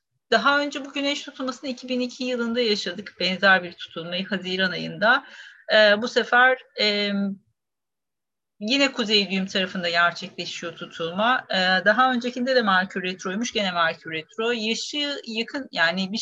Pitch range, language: 195-245 Hz, Turkish